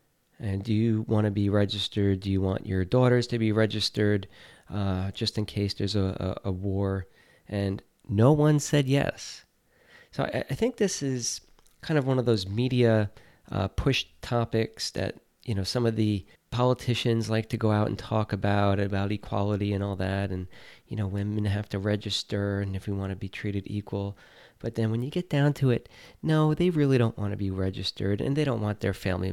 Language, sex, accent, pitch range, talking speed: English, male, American, 100-130 Hz, 205 wpm